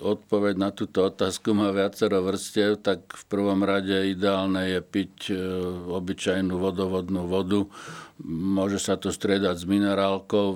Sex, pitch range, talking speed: male, 90-100 Hz, 130 wpm